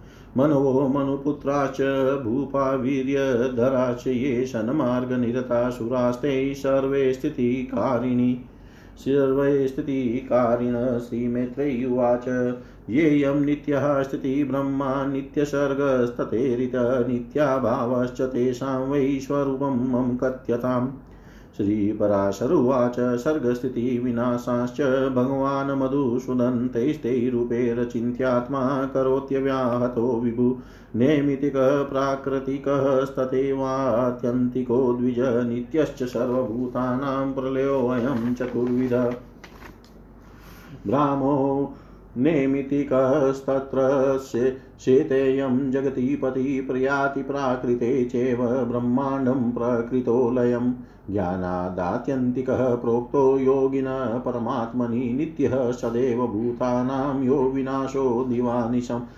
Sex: male